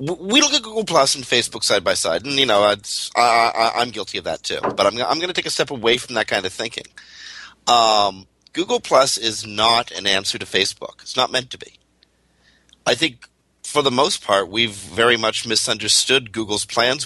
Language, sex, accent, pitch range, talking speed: English, male, American, 95-115 Hz, 210 wpm